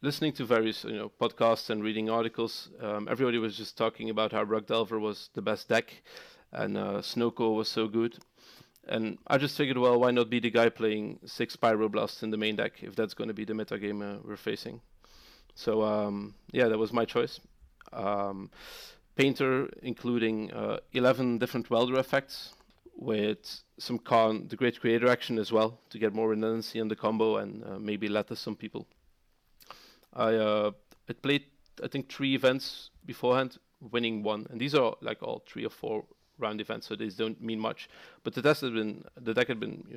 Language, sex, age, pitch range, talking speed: English, male, 30-49, 110-120 Hz, 190 wpm